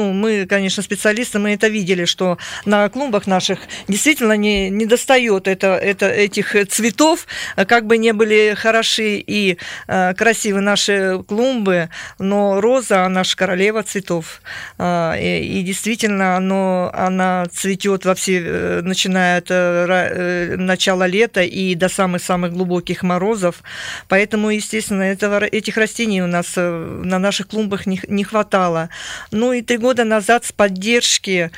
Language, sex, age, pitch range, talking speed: Russian, female, 50-69, 180-205 Hz, 130 wpm